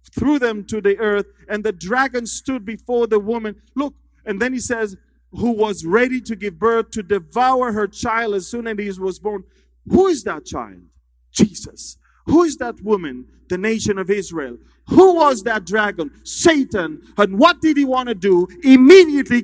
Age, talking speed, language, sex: 40-59, 180 wpm, English, male